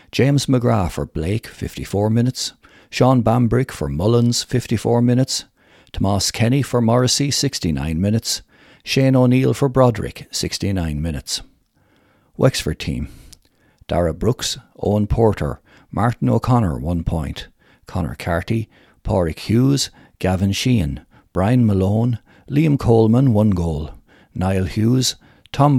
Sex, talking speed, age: male, 115 wpm, 60-79